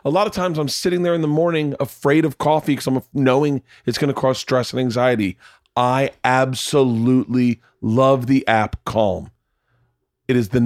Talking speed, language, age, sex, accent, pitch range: 180 wpm, English, 30-49, male, American, 120-145 Hz